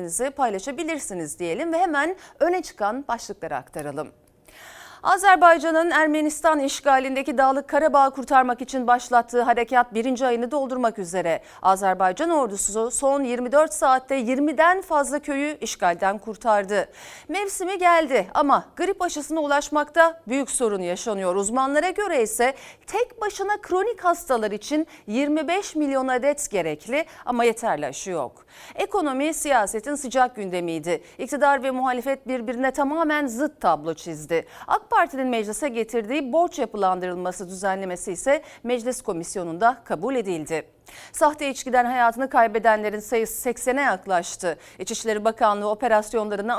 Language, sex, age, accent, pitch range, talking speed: Turkish, female, 40-59, native, 215-300 Hz, 115 wpm